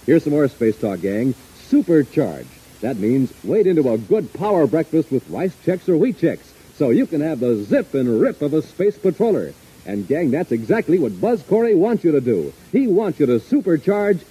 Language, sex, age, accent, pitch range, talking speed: English, male, 60-79, American, 140-205 Hz, 205 wpm